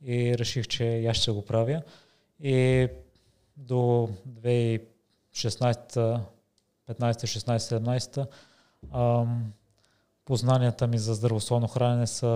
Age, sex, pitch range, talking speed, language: 20-39, male, 110-130 Hz, 85 wpm, Bulgarian